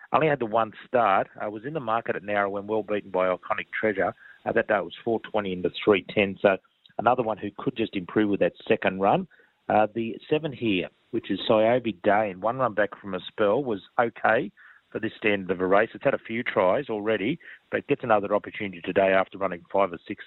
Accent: Australian